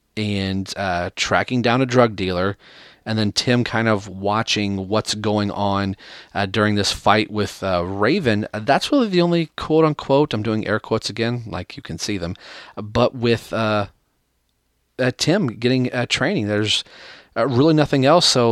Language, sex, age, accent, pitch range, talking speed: English, male, 30-49, American, 95-115 Hz, 170 wpm